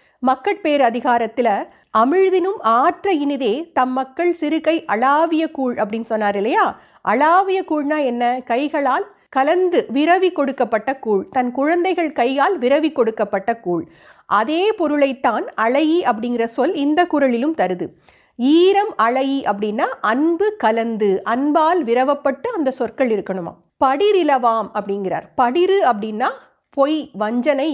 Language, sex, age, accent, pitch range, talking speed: Tamil, female, 50-69, native, 235-330 Hz, 100 wpm